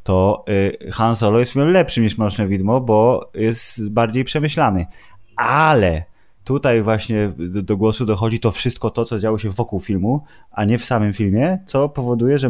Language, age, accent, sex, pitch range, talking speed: Polish, 20-39, native, male, 100-115 Hz, 170 wpm